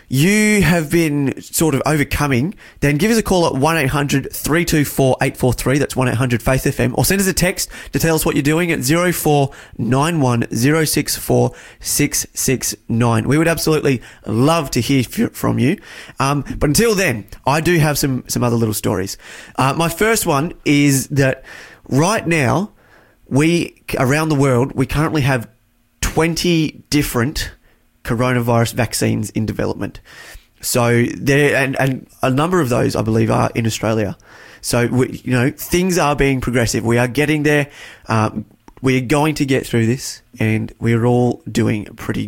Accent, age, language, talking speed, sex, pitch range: Australian, 30-49, English, 150 wpm, male, 115-150 Hz